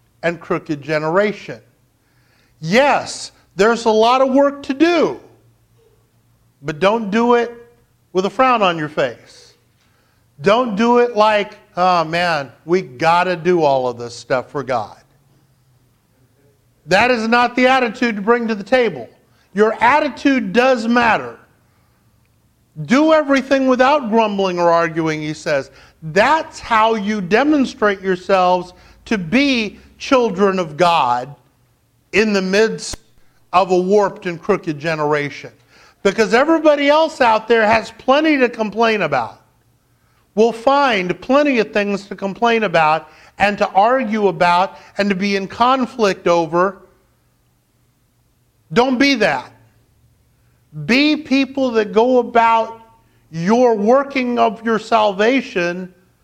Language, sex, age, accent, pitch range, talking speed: English, male, 50-69, American, 145-235 Hz, 125 wpm